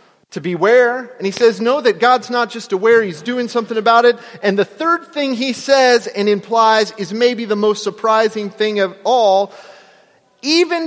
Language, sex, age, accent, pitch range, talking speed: English, male, 30-49, American, 220-275 Hz, 180 wpm